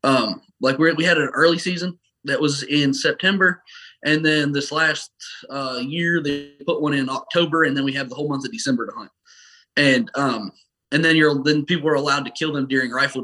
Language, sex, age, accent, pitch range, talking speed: English, male, 20-39, American, 130-170 Hz, 215 wpm